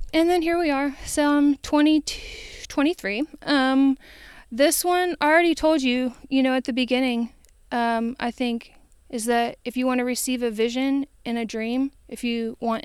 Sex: female